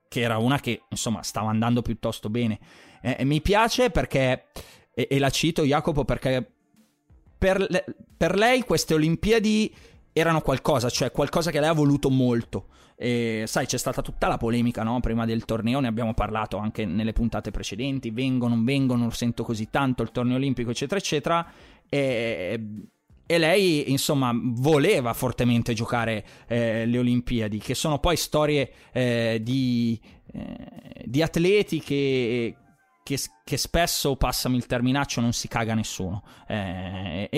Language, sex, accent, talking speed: Italian, male, native, 155 wpm